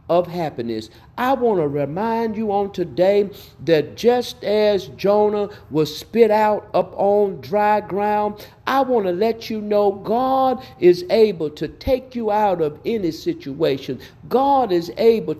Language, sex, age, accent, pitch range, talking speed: English, male, 50-69, American, 165-230 Hz, 150 wpm